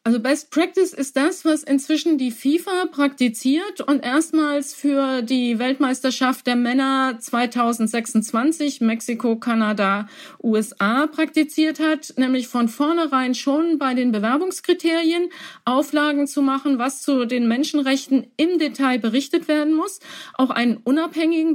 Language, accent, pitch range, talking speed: German, German, 235-295 Hz, 125 wpm